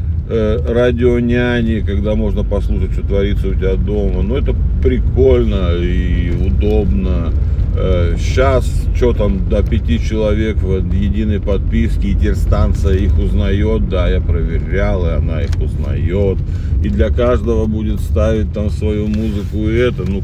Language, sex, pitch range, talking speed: Russian, male, 80-100 Hz, 140 wpm